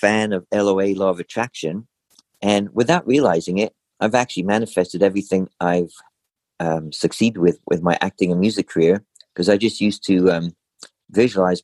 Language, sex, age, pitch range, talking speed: English, male, 50-69, 90-100 Hz, 160 wpm